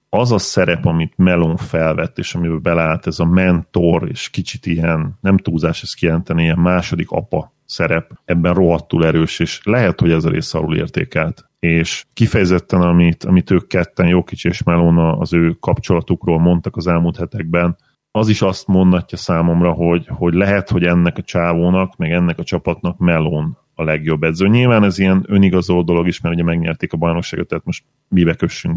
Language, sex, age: Hungarian, male, 30-49